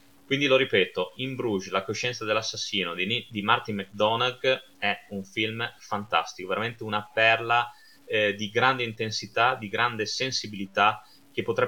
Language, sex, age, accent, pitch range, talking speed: Italian, male, 20-39, native, 100-135 Hz, 140 wpm